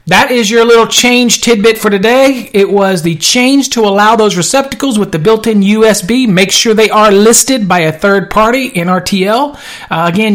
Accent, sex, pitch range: American, male, 175-215 Hz